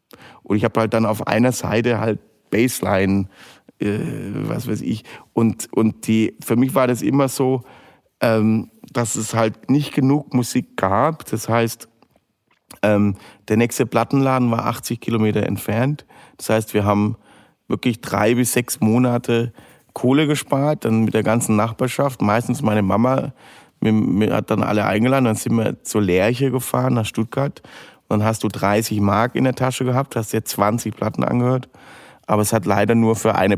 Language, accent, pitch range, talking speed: German, German, 105-120 Hz, 170 wpm